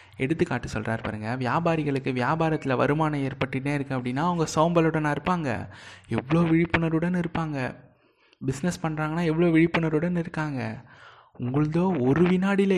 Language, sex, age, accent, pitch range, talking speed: Tamil, male, 20-39, native, 120-170 Hz, 110 wpm